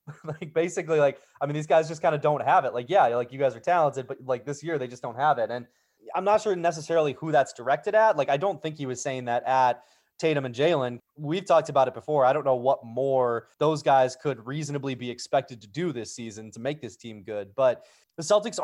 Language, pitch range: English, 130-165 Hz